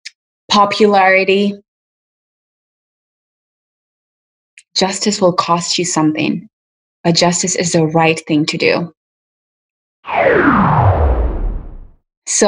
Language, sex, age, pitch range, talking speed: English, female, 20-39, 160-195 Hz, 70 wpm